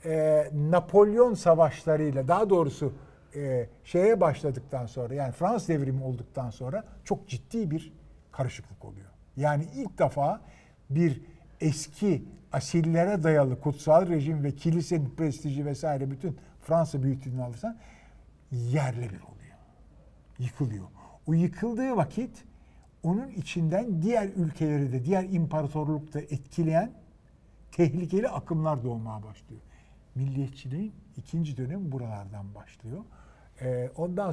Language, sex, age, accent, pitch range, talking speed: Turkish, male, 50-69, native, 125-170 Hz, 105 wpm